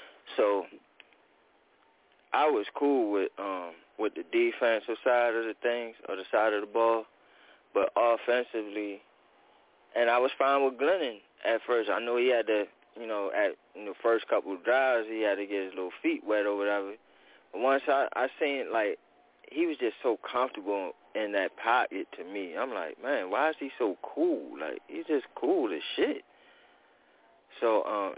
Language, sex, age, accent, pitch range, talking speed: English, male, 20-39, American, 110-150 Hz, 180 wpm